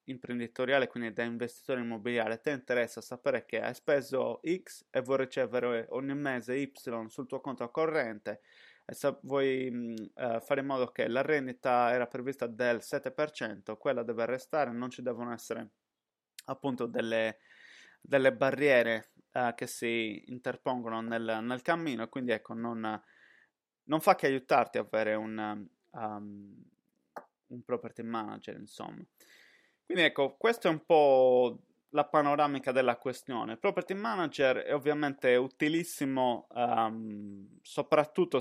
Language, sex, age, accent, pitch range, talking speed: Italian, male, 20-39, native, 115-135 Hz, 130 wpm